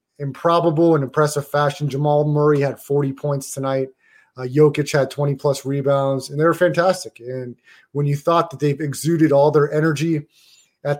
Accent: American